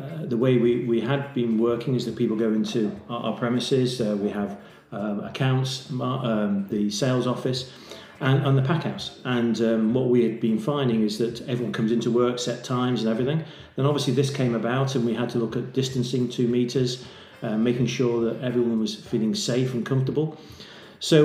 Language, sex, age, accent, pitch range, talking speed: English, male, 40-59, British, 120-140 Hz, 205 wpm